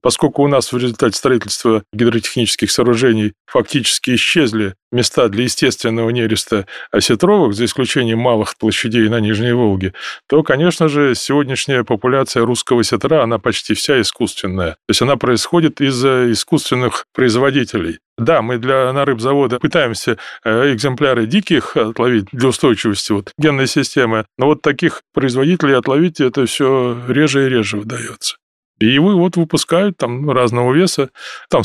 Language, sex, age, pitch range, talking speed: Russian, male, 20-39, 115-155 Hz, 135 wpm